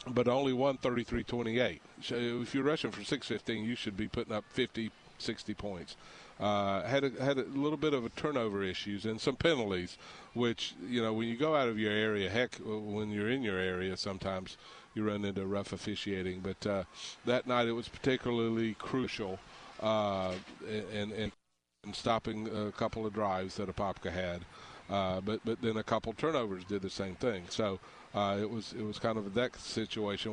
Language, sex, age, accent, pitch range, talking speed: English, male, 50-69, American, 100-115 Hz, 195 wpm